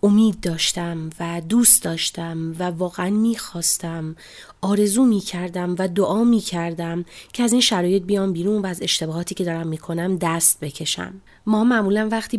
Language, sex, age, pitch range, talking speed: Persian, female, 30-49, 170-210 Hz, 145 wpm